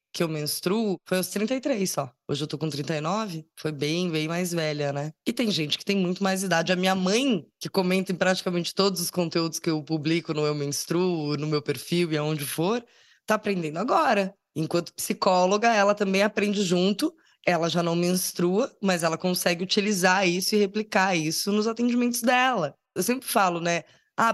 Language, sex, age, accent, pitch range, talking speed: English, female, 20-39, Brazilian, 170-230 Hz, 190 wpm